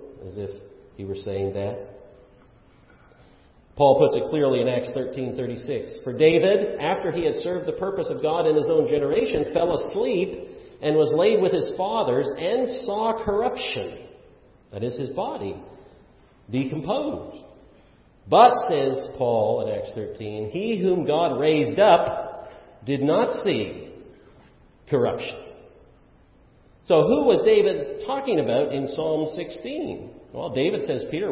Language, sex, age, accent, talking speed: English, male, 40-59, American, 140 wpm